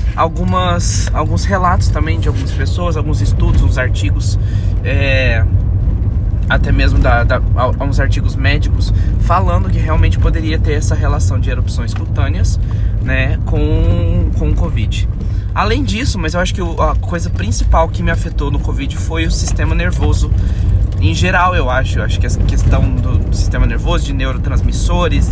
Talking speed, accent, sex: 160 wpm, Brazilian, male